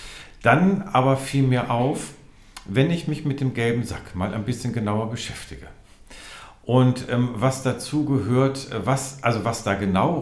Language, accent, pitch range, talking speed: German, German, 95-125 Hz, 160 wpm